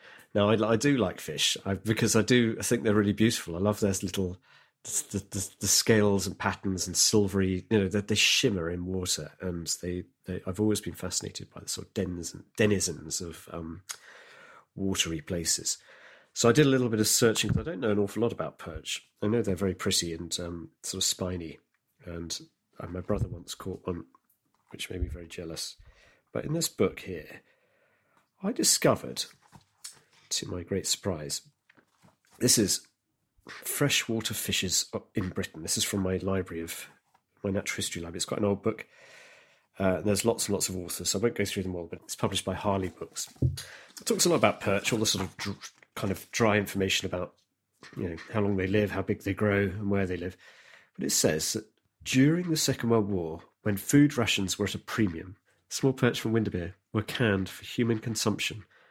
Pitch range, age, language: 90-110 Hz, 40-59, English